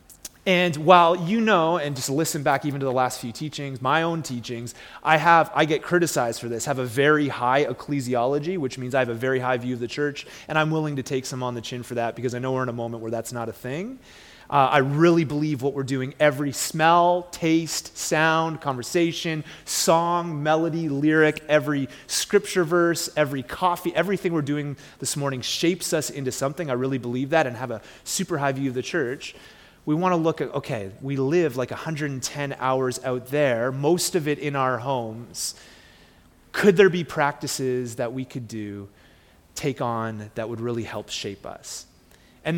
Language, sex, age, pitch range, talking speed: English, male, 30-49, 130-165 Hz, 200 wpm